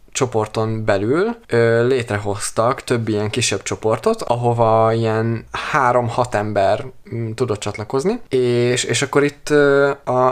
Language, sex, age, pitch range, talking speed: Hungarian, male, 20-39, 105-130 Hz, 105 wpm